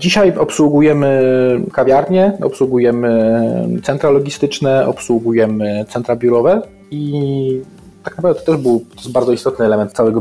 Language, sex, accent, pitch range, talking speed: Polish, male, native, 110-130 Hz, 125 wpm